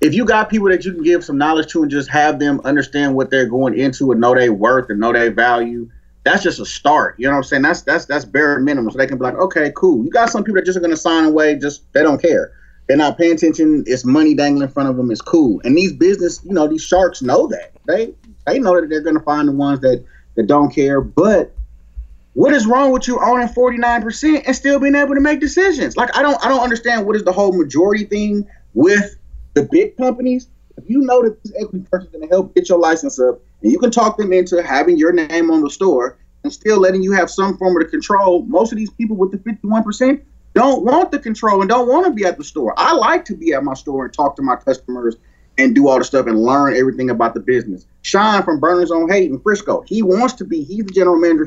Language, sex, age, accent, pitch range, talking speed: English, male, 30-49, American, 140-230 Hz, 260 wpm